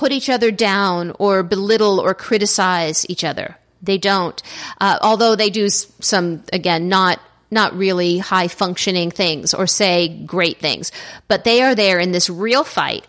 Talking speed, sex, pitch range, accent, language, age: 160 wpm, female, 180-225 Hz, American, English, 40-59